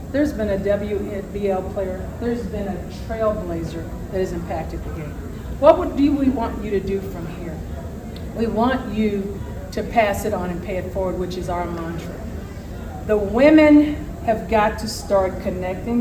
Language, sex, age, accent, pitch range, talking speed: English, female, 40-59, American, 195-255 Hz, 170 wpm